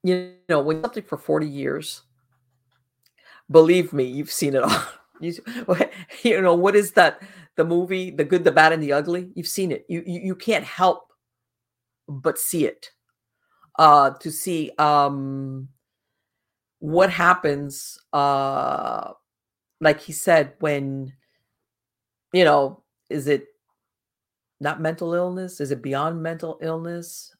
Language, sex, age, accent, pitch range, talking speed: English, female, 50-69, American, 140-175 Hz, 140 wpm